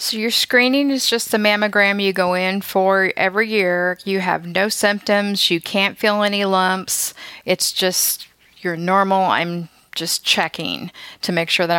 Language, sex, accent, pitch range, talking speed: English, female, American, 175-195 Hz, 170 wpm